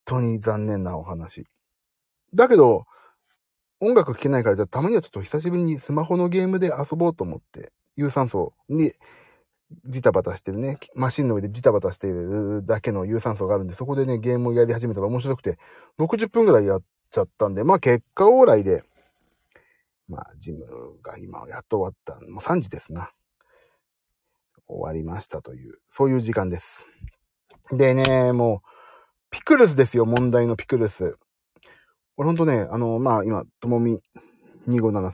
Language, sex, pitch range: Japanese, male, 110-170 Hz